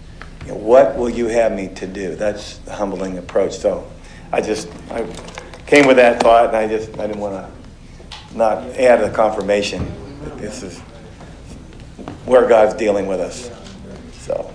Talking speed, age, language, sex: 160 wpm, 50-69, English, male